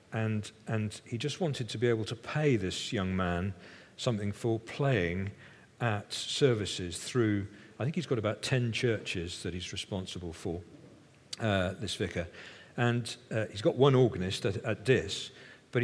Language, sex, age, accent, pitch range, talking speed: English, male, 50-69, British, 100-130 Hz, 165 wpm